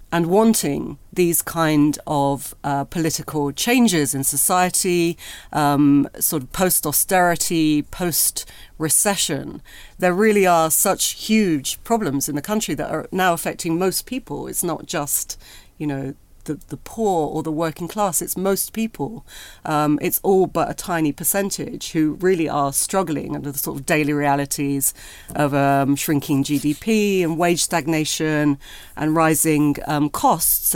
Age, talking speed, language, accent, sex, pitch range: 40-59, 145 wpm, English, British, female, 145-190 Hz